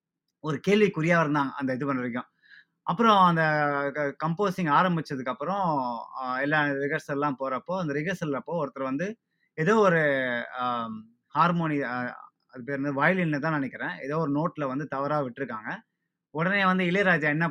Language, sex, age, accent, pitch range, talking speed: Tamil, male, 20-39, native, 135-155 Hz, 125 wpm